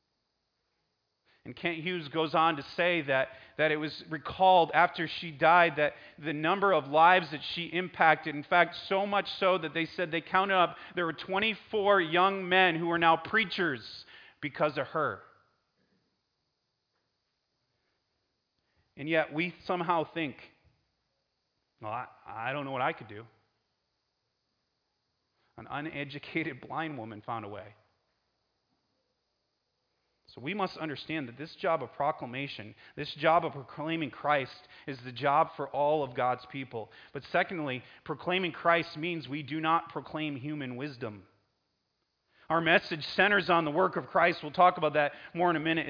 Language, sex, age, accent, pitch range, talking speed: English, male, 30-49, American, 145-180 Hz, 150 wpm